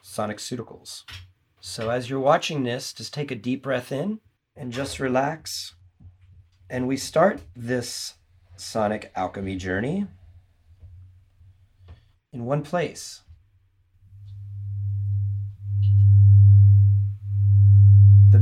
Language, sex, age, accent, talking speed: English, male, 40-59, American, 90 wpm